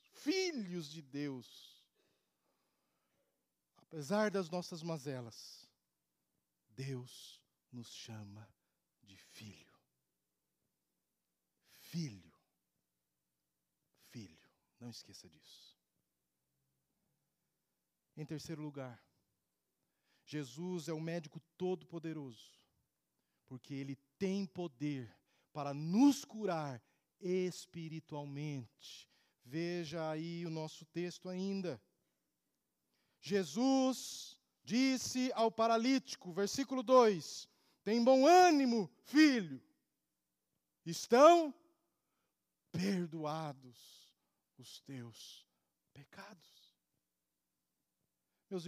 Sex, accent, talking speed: male, Brazilian, 70 wpm